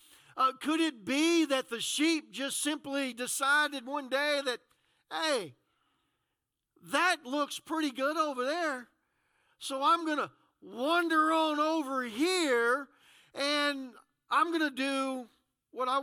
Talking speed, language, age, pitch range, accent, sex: 130 wpm, English, 50-69, 245-300 Hz, American, male